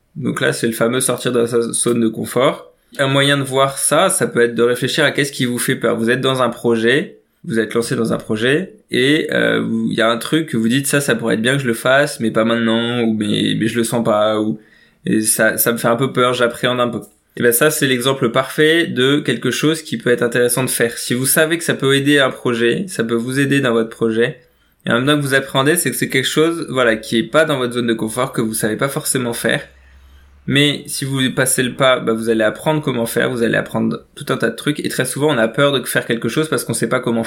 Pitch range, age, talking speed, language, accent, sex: 115-135 Hz, 20-39, 280 wpm, French, French, male